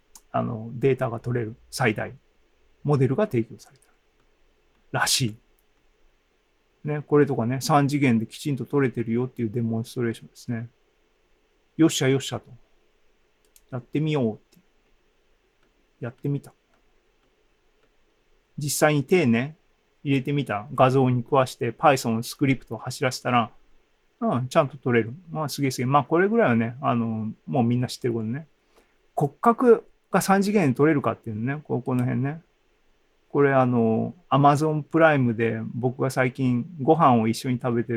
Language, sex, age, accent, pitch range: Japanese, male, 40-59, native, 120-155 Hz